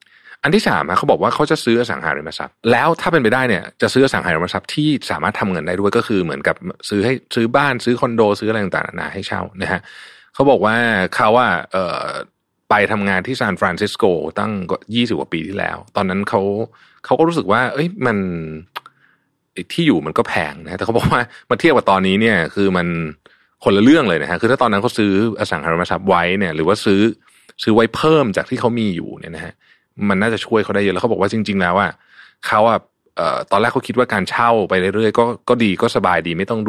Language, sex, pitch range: Thai, male, 95-120 Hz